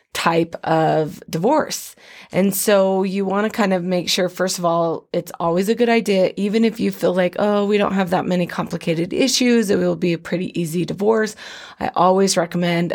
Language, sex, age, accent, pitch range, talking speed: English, female, 20-39, American, 170-205 Hz, 200 wpm